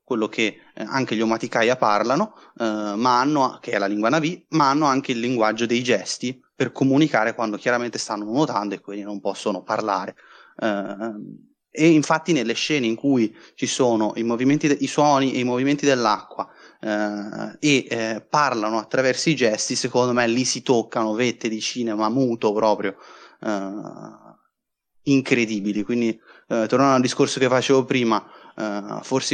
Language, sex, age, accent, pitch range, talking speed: Italian, male, 30-49, native, 110-130 Hz, 150 wpm